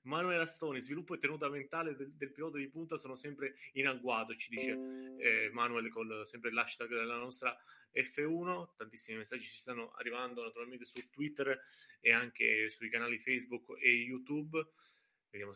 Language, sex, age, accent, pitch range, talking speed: Italian, male, 20-39, native, 115-140 Hz, 160 wpm